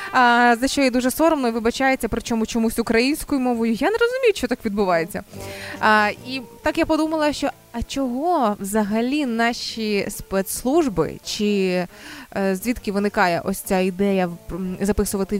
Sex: female